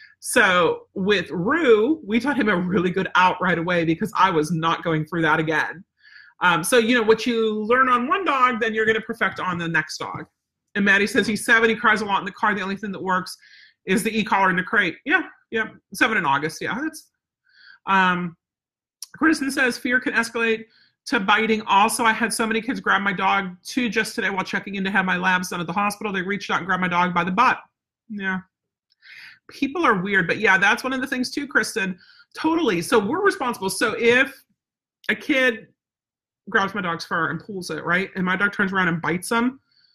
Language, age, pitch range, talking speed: English, 40-59, 175-240 Hz, 220 wpm